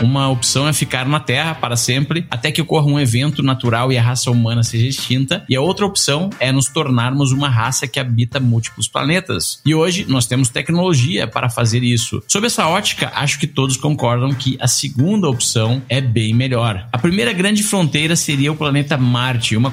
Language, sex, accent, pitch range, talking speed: Portuguese, male, Brazilian, 125-150 Hz, 195 wpm